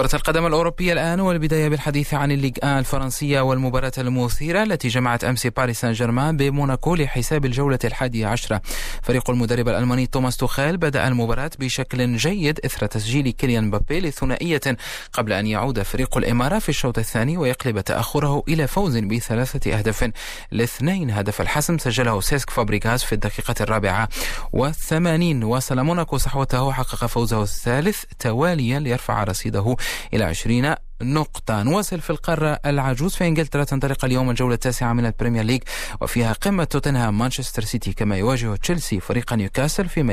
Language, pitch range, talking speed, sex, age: Arabic, 115-145 Hz, 145 wpm, male, 30-49